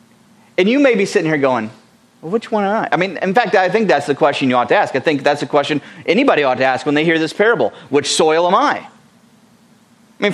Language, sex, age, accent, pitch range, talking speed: English, male, 30-49, American, 155-220 Hz, 255 wpm